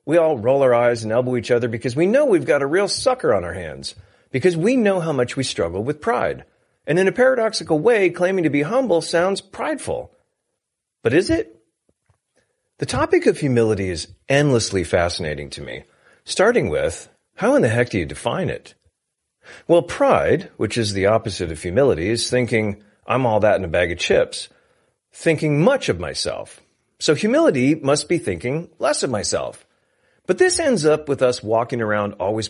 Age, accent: 40-59, American